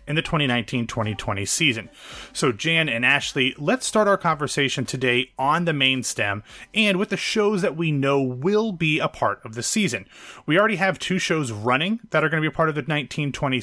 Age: 30-49